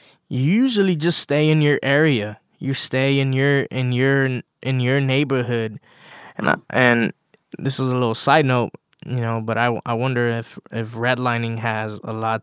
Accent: American